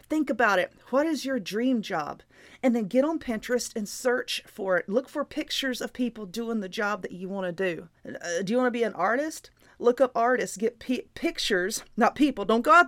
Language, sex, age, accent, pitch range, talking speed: English, female, 30-49, American, 215-275 Hz, 225 wpm